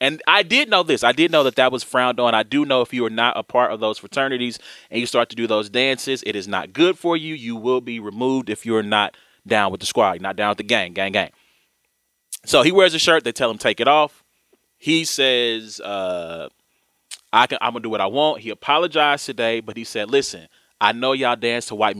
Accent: American